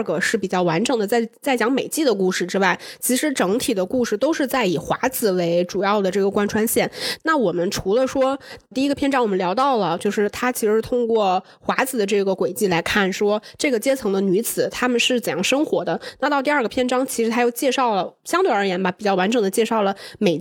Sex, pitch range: female, 200-260 Hz